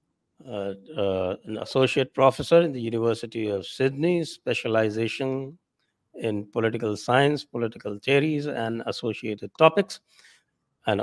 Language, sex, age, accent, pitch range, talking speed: English, male, 60-79, Indian, 110-165 Hz, 110 wpm